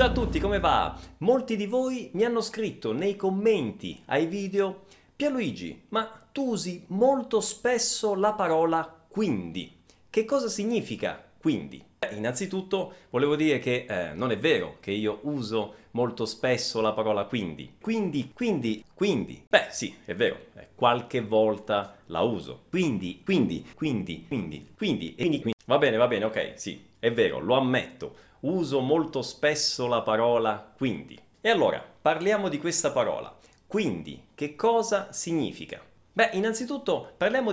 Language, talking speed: Italian, 150 wpm